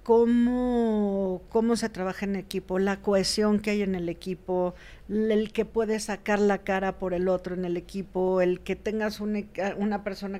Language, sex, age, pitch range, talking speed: Spanish, female, 50-69, 180-215 Hz, 175 wpm